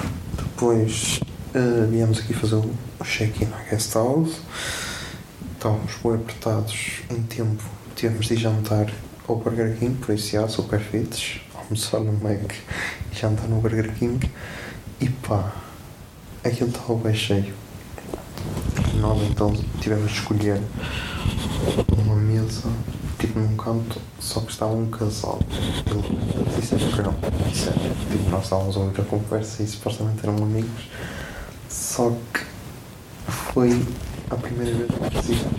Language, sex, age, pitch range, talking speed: Portuguese, male, 20-39, 105-115 Hz, 135 wpm